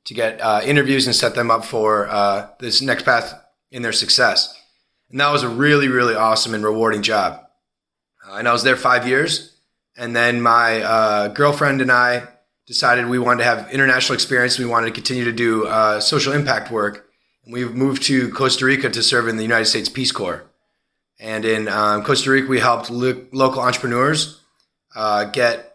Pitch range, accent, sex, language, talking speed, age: 110-130 Hz, American, male, English, 190 wpm, 30-49